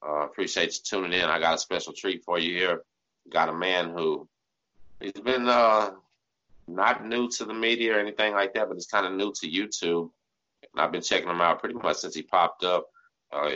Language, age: English, 30-49